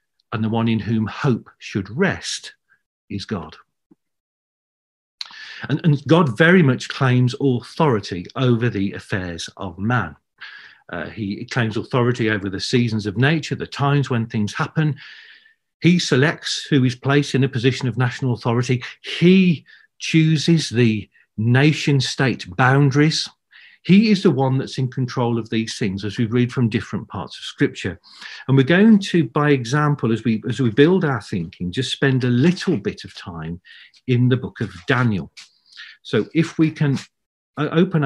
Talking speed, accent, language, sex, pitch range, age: 160 wpm, British, English, male, 115-150 Hz, 50-69